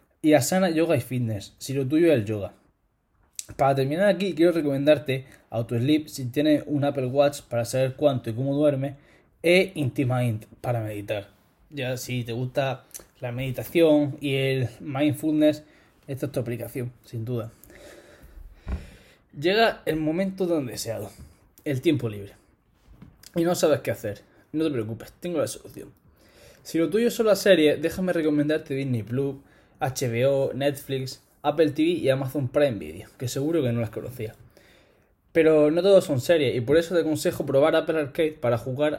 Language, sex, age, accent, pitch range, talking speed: Spanish, male, 10-29, Spanish, 120-155 Hz, 165 wpm